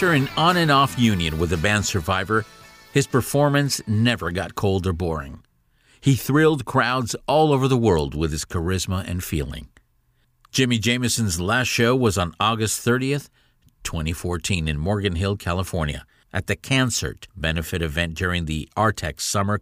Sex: male